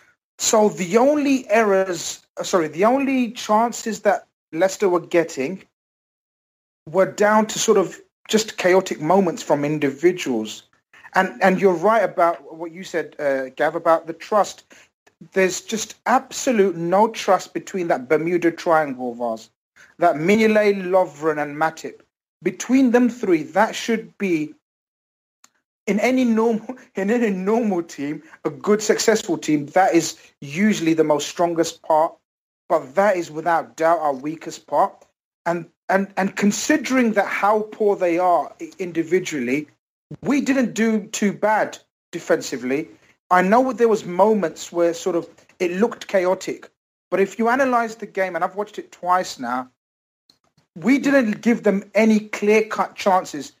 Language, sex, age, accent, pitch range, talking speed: English, male, 40-59, British, 165-220 Hz, 145 wpm